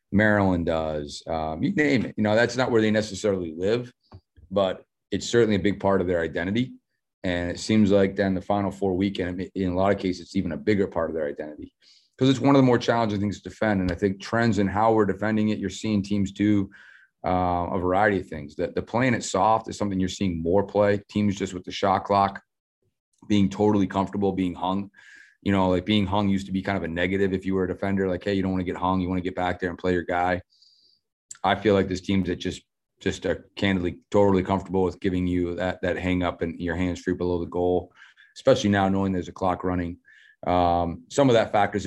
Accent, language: American, English